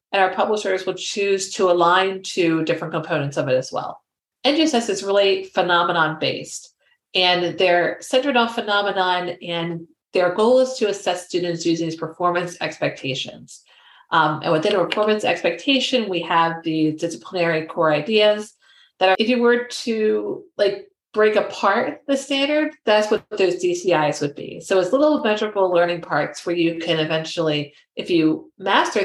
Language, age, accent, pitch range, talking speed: English, 40-59, American, 170-215 Hz, 155 wpm